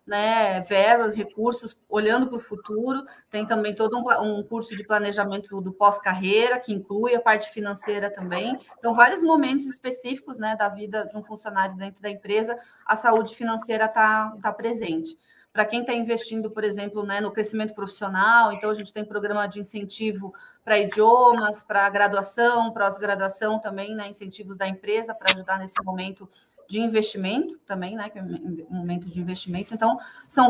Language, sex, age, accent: Portuguese, female, 30-49, Brazilian